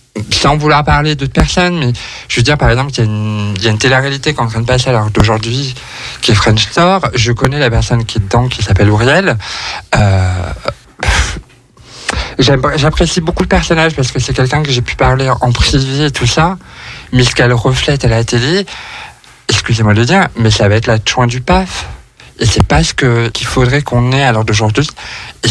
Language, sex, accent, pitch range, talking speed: French, male, French, 115-150 Hz, 210 wpm